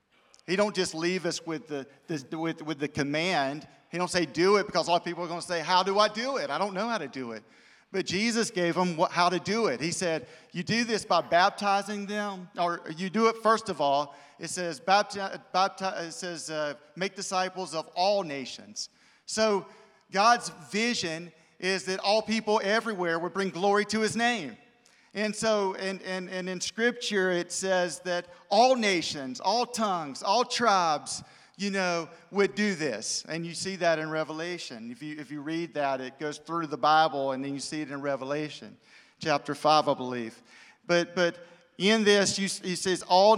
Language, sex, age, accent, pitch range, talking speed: English, male, 40-59, American, 165-210 Hz, 195 wpm